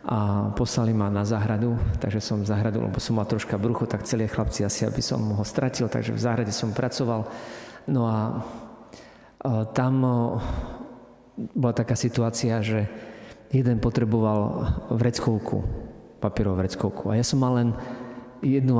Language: Slovak